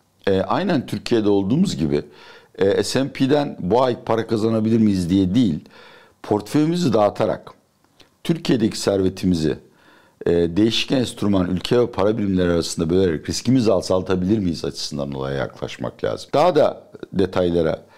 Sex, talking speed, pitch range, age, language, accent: male, 125 wpm, 80-105 Hz, 60-79, Turkish, native